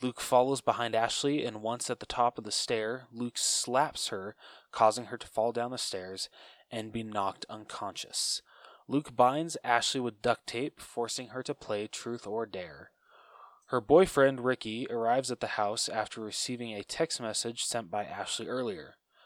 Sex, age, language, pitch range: male, 20-39, English, 115-130 Hz